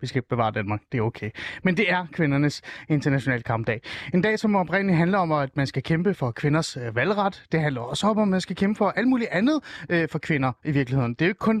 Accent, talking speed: native, 245 wpm